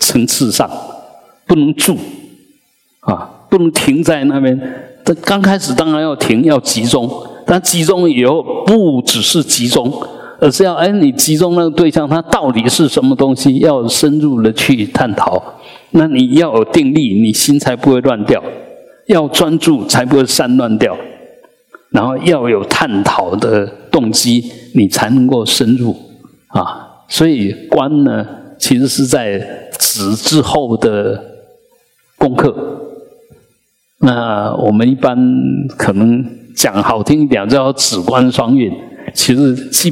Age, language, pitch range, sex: 50-69, Chinese, 120-165 Hz, male